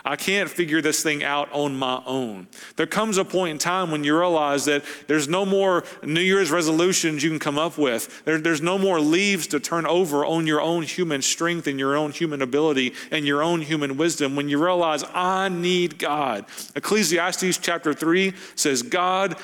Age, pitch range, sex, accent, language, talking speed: 40-59, 140-180 Hz, male, American, English, 195 wpm